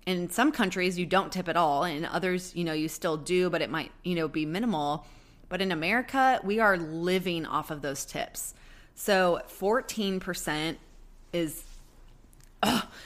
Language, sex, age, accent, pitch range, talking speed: English, female, 20-39, American, 155-185 Hz, 165 wpm